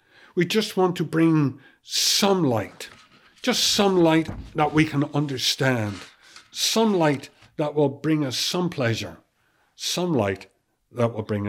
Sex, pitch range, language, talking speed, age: male, 115-150 Hz, English, 140 wpm, 60-79